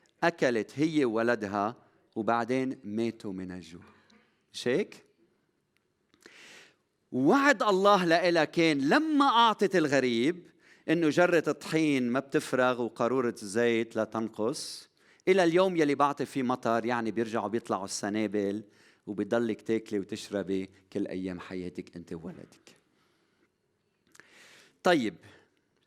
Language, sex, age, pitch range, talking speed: Arabic, male, 40-59, 110-160 Hz, 100 wpm